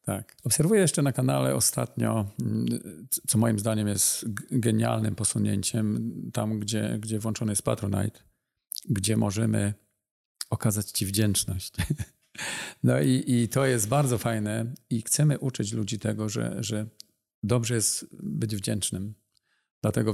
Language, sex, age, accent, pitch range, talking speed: Polish, male, 40-59, native, 105-120 Hz, 125 wpm